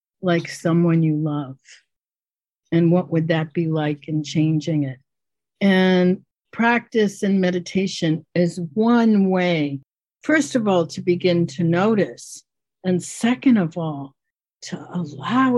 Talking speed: 125 wpm